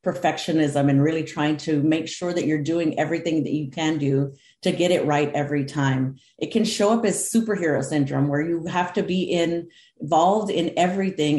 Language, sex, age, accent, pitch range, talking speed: English, female, 40-59, American, 145-180 Hz, 195 wpm